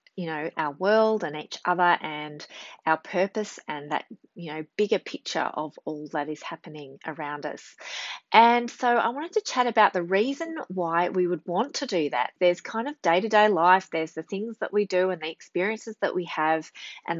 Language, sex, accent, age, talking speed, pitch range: English, female, Australian, 30-49, 200 wpm, 160-215 Hz